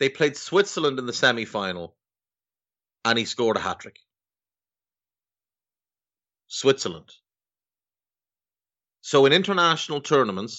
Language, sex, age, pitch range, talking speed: English, male, 30-49, 90-130 Hz, 90 wpm